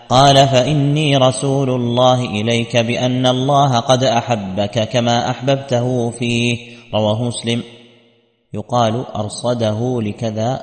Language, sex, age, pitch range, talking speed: Arabic, male, 30-49, 115-130 Hz, 95 wpm